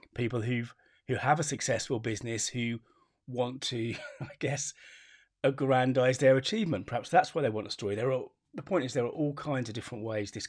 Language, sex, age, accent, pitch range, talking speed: English, male, 30-49, British, 105-130 Hz, 200 wpm